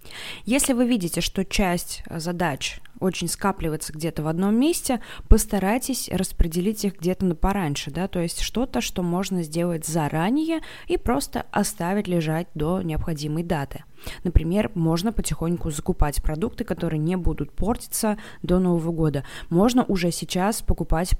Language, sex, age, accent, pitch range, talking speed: Russian, female, 20-39, native, 170-225 Hz, 135 wpm